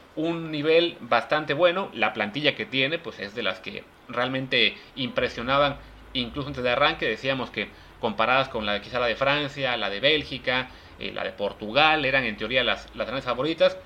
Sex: male